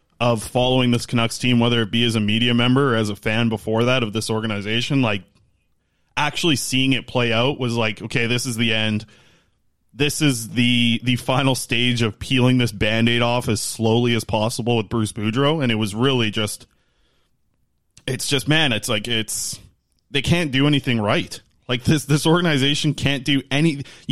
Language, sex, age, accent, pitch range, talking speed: English, male, 20-39, American, 110-140 Hz, 185 wpm